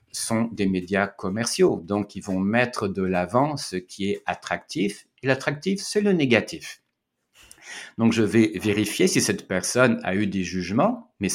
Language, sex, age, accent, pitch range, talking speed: French, male, 60-79, French, 95-130 Hz, 165 wpm